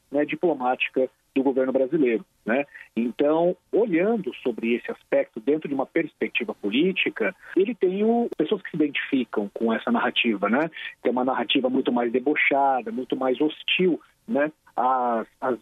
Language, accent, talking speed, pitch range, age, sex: Portuguese, Brazilian, 155 wpm, 125-160 Hz, 40-59, male